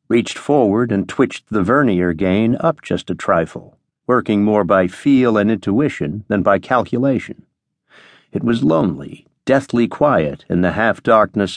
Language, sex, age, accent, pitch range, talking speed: English, male, 60-79, American, 100-130 Hz, 145 wpm